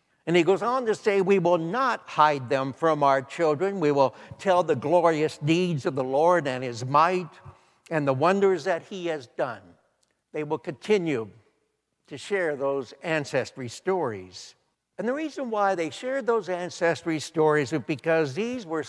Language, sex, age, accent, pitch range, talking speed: English, male, 60-79, American, 145-185 Hz, 170 wpm